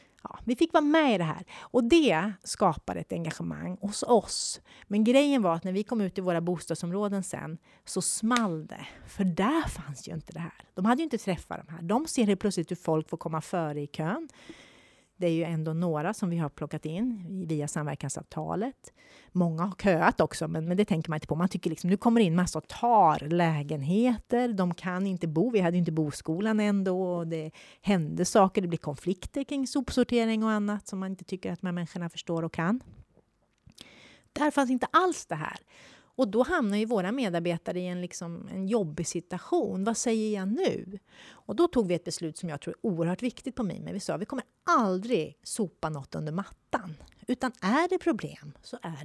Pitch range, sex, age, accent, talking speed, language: 165-225 Hz, female, 30-49, Swedish, 205 wpm, English